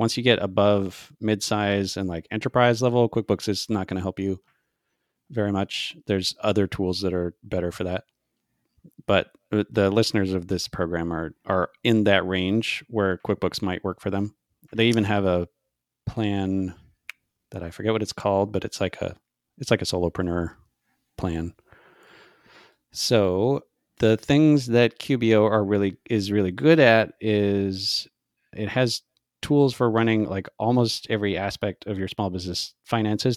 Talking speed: 160 wpm